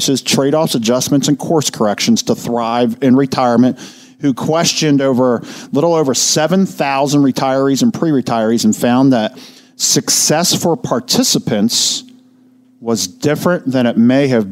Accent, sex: American, male